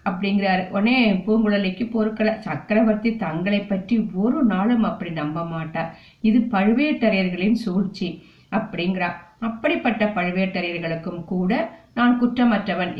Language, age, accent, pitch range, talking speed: Tamil, 50-69, native, 180-230 Hz, 65 wpm